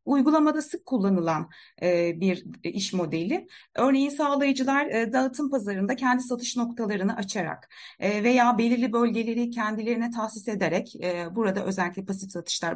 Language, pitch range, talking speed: Turkish, 200-280 Hz, 130 wpm